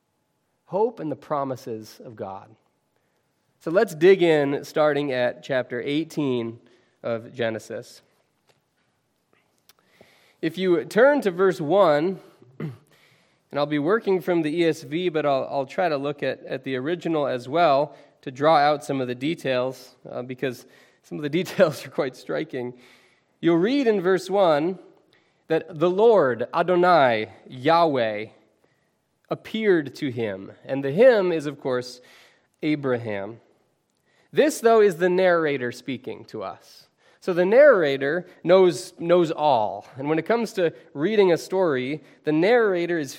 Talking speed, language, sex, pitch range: 140 wpm, English, male, 130-180 Hz